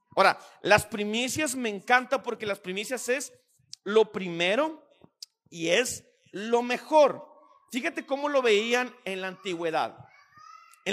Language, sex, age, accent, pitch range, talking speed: Spanish, male, 40-59, Mexican, 210-295 Hz, 125 wpm